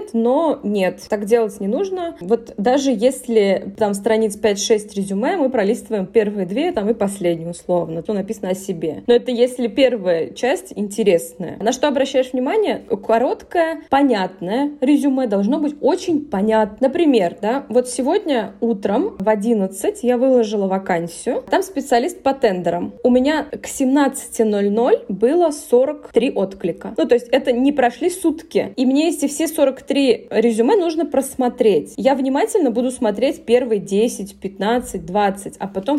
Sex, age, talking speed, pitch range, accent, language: female, 20-39, 150 wpm, 215-275 Hz, native, Russian